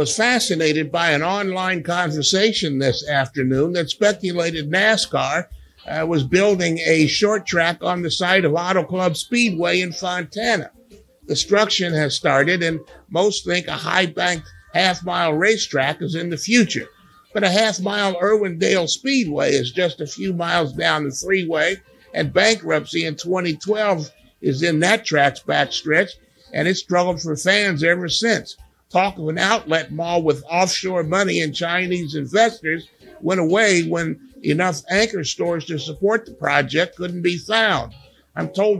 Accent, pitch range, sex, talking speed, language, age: American, 160-200 Hz, male, 150 wpm, English, 50-69